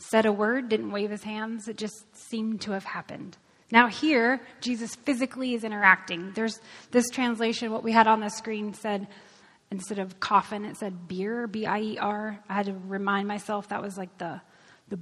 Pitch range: 205-275 Hz